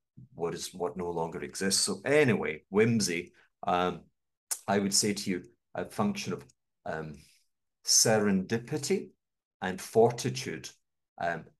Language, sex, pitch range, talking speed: English, male, 90-130 Hz, 120 wpm